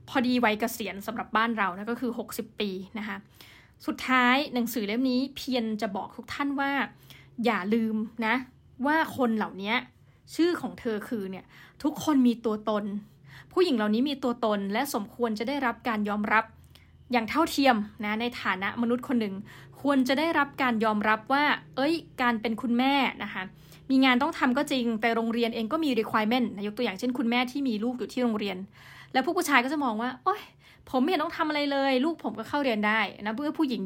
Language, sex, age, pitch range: Thai, female, 20-39, 215-265 Hz